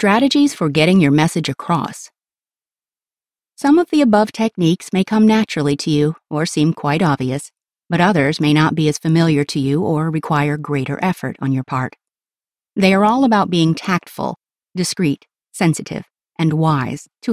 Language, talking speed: English, 165 wpm